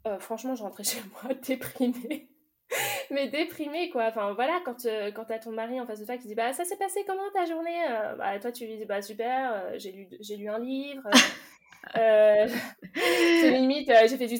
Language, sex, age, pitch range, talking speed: French, female, 20-39, 195-255 Hz, 230 wpm